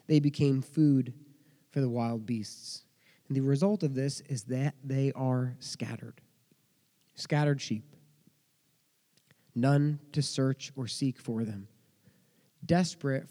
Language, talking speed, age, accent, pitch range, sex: English, 120 wpm, 30-49, American, 130-165 Hz, male